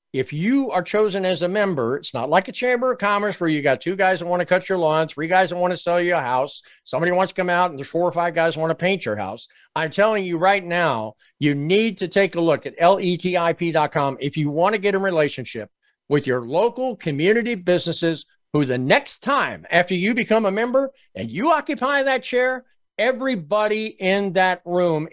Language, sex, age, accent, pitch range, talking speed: English, male, 50-69, American, 145-190 Hz, 220 wpm